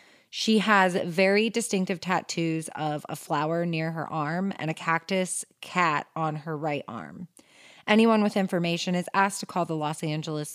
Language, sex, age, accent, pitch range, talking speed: English, female, 30-49, American, 160-195 Hz, 165 wpm